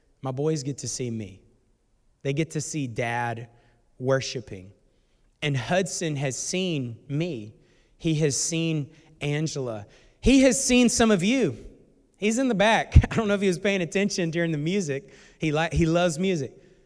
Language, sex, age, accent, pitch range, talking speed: English, male, 30-49, American, 125-170 Hz, 165 wpm